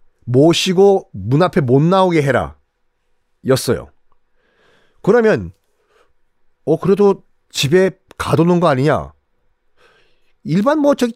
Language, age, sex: Korean, 40-59, male